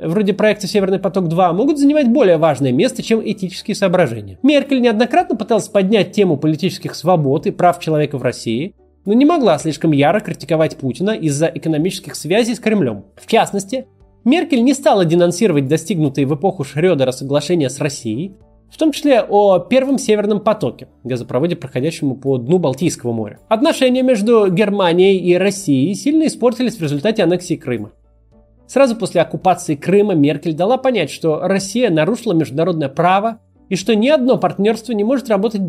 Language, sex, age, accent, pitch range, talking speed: Russian, male, 20-39, native, 155-220 Hz, 155 wpm